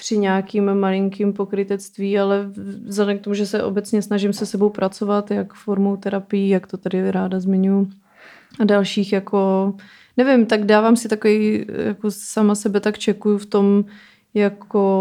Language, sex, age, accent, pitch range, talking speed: Czech, female, 20-39, native, 200-215 Hz, 155 wpm